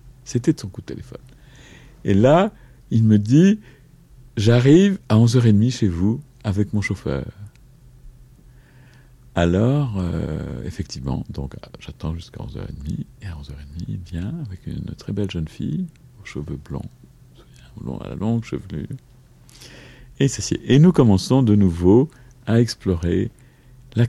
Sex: male